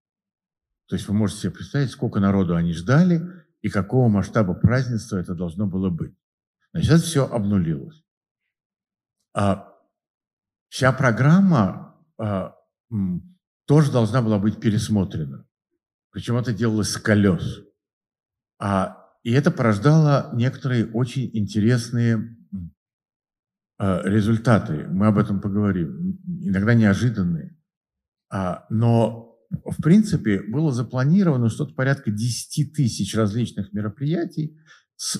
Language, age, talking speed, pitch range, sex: Russian, 60-79, 100 wpm, 105-165 Hz, male